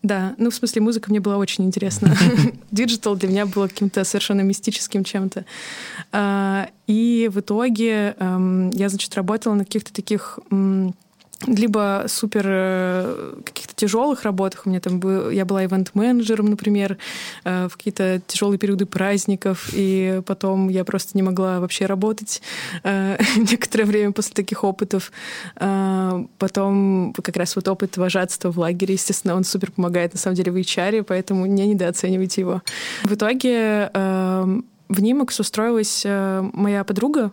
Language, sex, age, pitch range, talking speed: Russian, female, 20-39, 190-215 Hz, 135 wpm